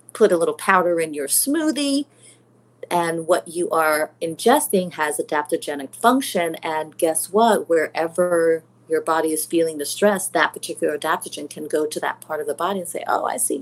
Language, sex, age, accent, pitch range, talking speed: English, female, 30-49, American, 150-205 Hz, 180 wpm